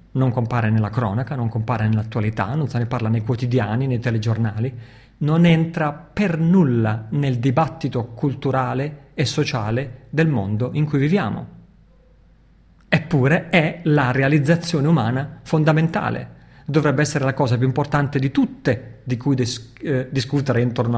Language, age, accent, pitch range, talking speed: Italian, 40-59, native, 115-145 Hz, 140 wpm